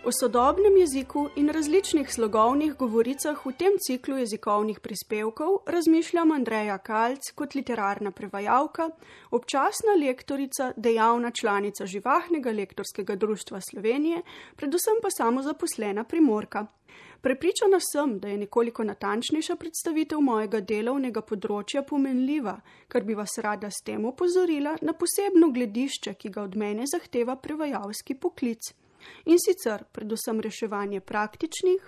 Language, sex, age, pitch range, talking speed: Italian, female, 30-49, 220-315 Hz, 120 wpm